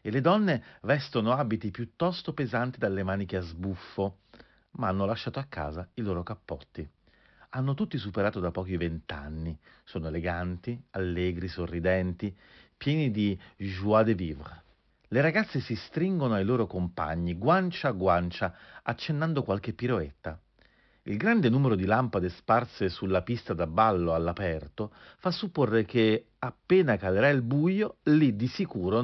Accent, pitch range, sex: native, 95-150 Hz, male